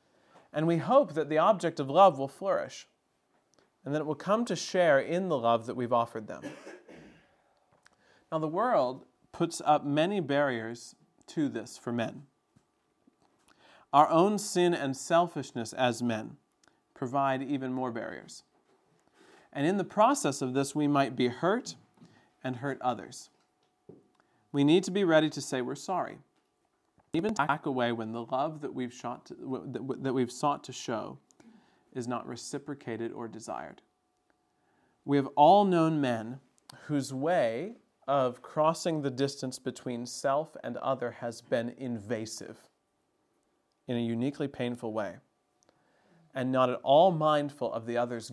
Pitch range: 120-155 Hz